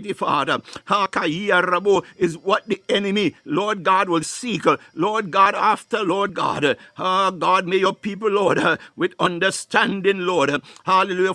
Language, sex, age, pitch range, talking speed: English, male, 60-79, 185-215 Hz, 130 wpm